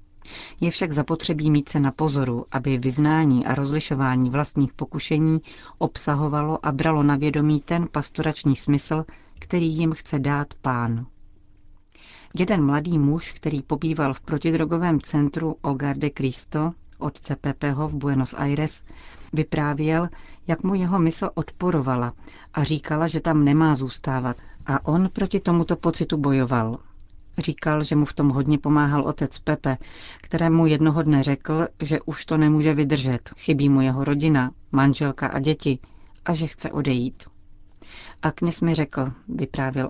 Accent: native